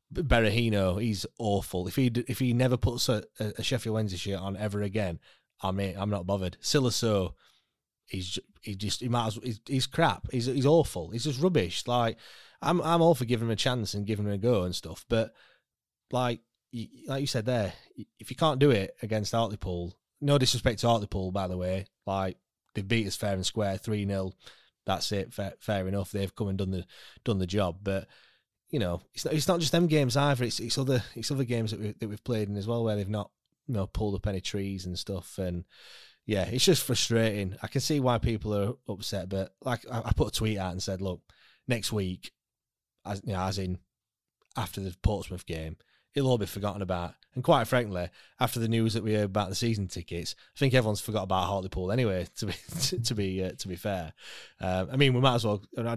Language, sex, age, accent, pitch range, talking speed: English, male, 20-39, British, 95-125 Hz, 225 wpm